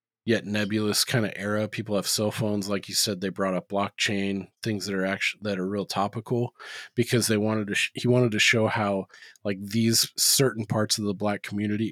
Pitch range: 100-115 Hz